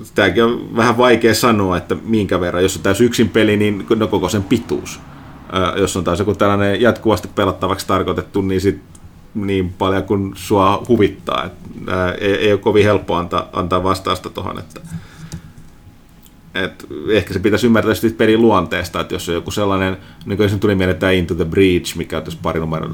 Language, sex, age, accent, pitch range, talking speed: Finnish, male, 30-49, native, 90-105 Hz, 165 wpm